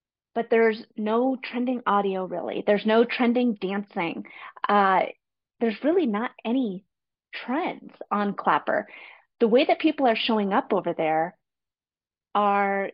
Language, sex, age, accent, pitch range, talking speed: English, female, 30-49, American, 200-250 Hz, 130 wpm